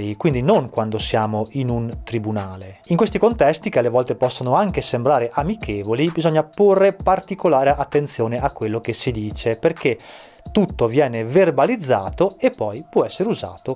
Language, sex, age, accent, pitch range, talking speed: Italian, male, 20-39, native, 115-165 Hz, 155 wpm